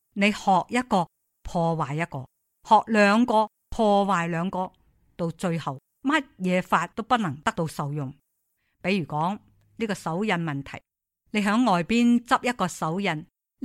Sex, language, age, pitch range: female, Chinese, 50-69, 165-225 Hz